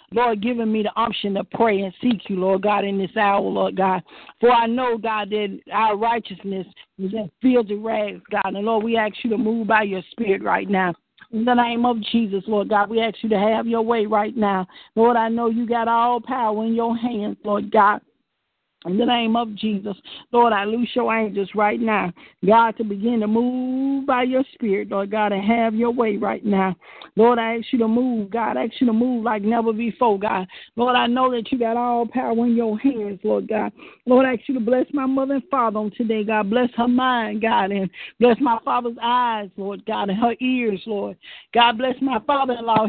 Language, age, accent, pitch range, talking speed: English, 50-69, American, 210-240 Hz, 220 wpm